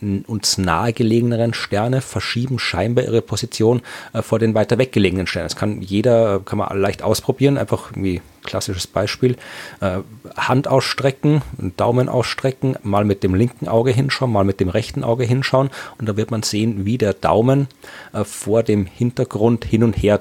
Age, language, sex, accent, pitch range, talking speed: 40-59, German, male, German, 100-125 Hz, 165 wpm